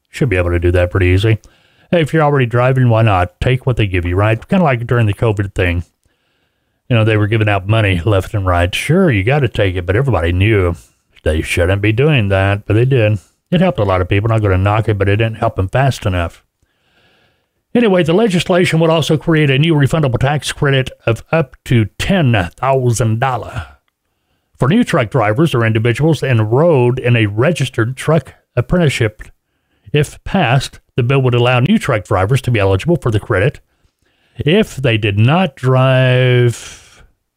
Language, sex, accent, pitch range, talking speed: English, male, American, 100-145 Hz, 195 wpm